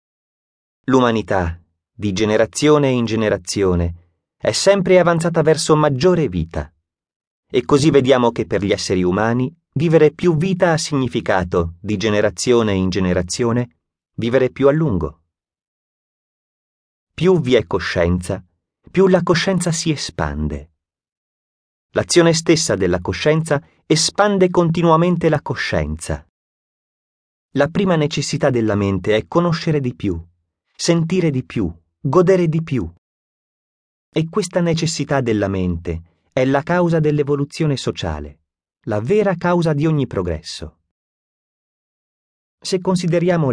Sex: male